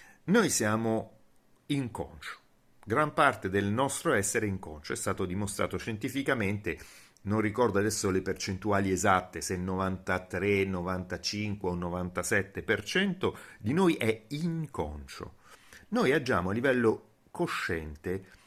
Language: Italian